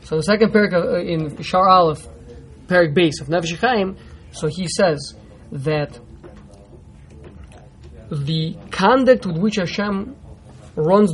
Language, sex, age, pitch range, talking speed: English, male, 20-39, 155-190 Hz, 110 wpm